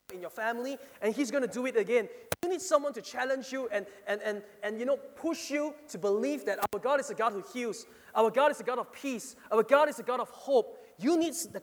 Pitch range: 195-275 Hz